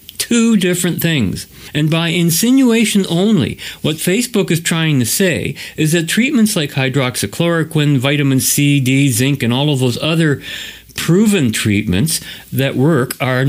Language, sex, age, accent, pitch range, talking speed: English, male, 50-69, American, 120-175 Hz, 140 wpm